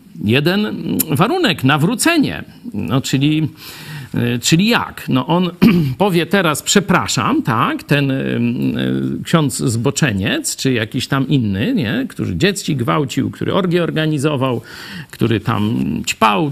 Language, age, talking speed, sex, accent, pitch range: Polish, 50-69, 110 wpm, male, native, 130-170 Hz